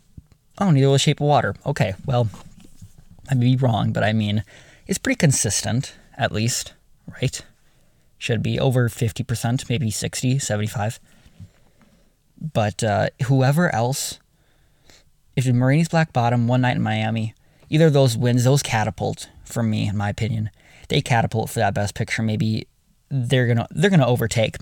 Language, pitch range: English, 110-135 Hz